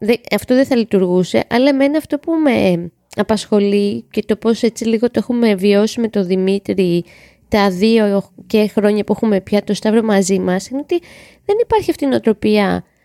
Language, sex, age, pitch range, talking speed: Greek, female, 20-39, 200-245 Hz, 185 wpm